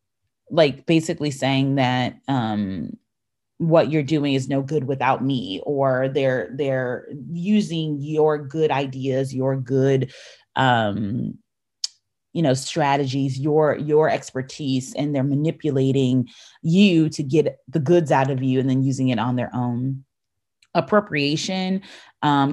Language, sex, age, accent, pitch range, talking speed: English, female, 30-49, American, 130-150 Hz, 130 wpm